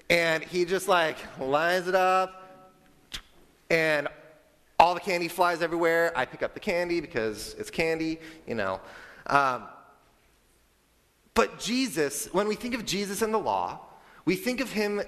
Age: 30-49